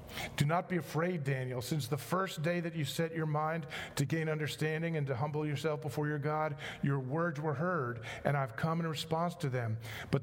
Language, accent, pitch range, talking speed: English, American, 125-160 Hz, 210 wpm